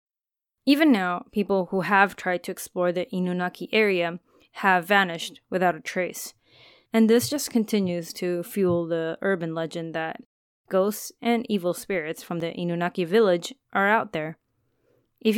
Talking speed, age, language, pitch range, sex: 150 wpm, 20-39, English, 170-215 Hz, female